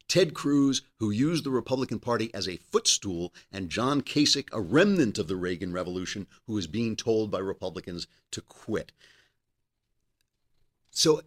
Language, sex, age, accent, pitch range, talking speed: English, male, 50-69, American, 95-150 Hz, 150 wpm